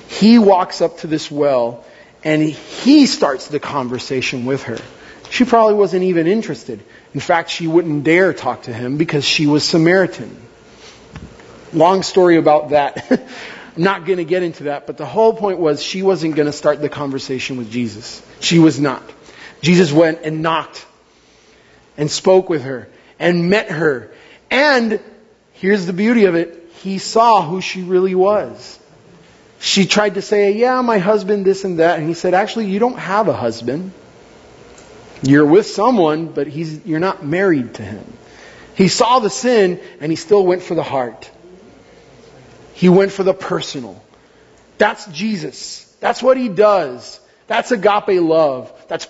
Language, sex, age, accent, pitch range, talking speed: English, male, 30-49, American, 155-205 Hz, 165 wpm